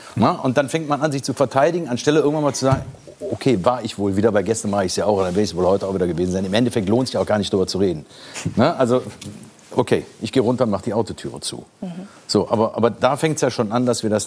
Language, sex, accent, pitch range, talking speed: German, male, German, 100-125 Hz, 290 wpm